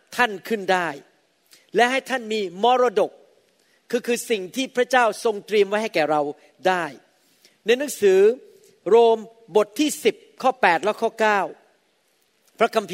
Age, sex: 40-59, male